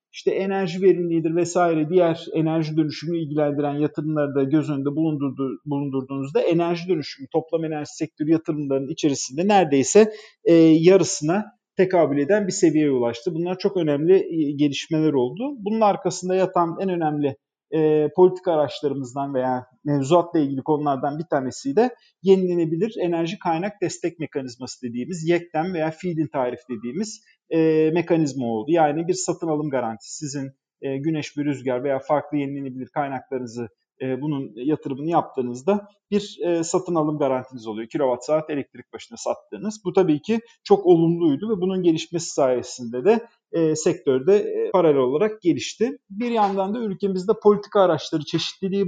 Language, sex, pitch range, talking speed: Turkish, male, 145-185 Hz, 135 wpm